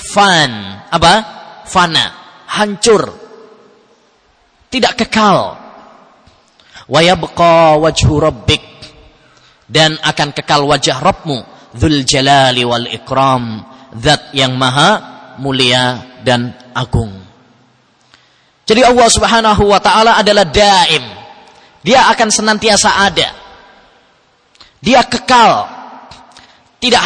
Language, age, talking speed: English, 20-39, 80 wpm